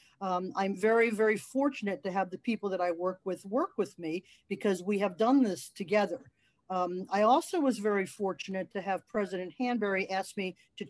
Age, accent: 50-69, American